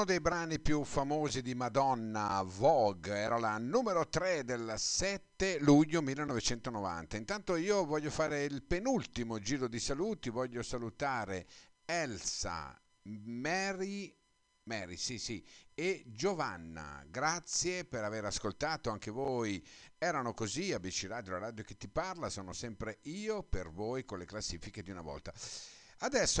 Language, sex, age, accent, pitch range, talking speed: Italian, male, 50-69, native, 95-155 Hz, 135 wpm